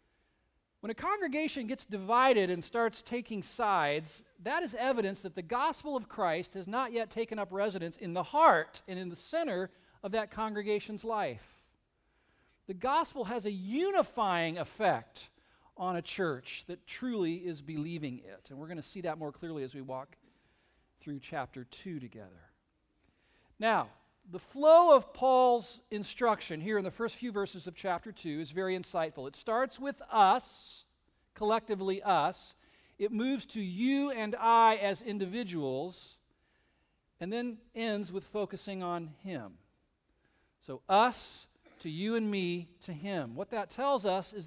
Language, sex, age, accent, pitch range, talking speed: English, male, 40-59, American, 175-240 Hz, 155 wpm